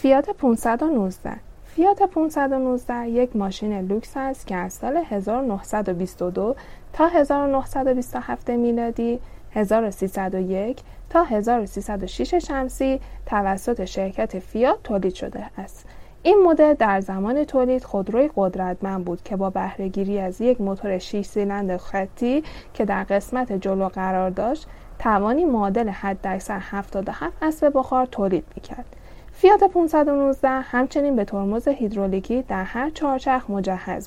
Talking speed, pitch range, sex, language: 120 wpm, 195-270 Hz, female, Persian